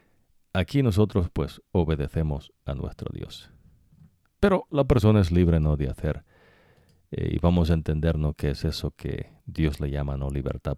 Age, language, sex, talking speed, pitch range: 50-69, English, male, 165 wpm, 75-105 Hz